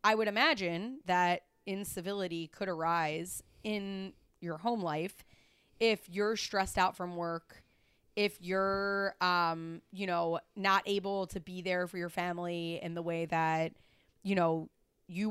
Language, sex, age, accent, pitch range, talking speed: English, female, 30-49, American, 170-200 Hz, 145 wpm